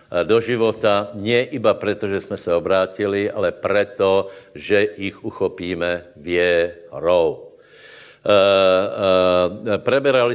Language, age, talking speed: Slovak, 60-79, 95 wpm